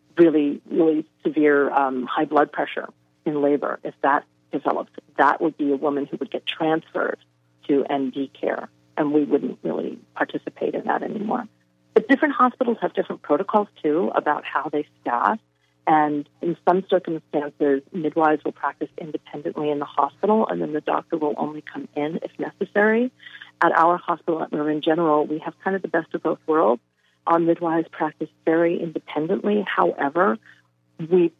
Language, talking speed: English, 160 wpm